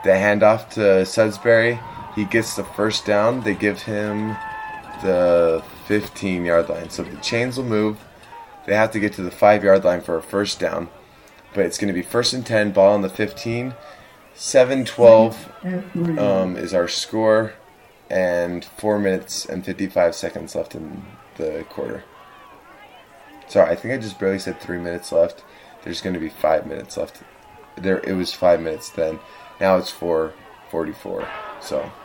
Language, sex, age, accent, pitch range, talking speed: English, male, 20-39, American, 90-110 Hz, 165 wpm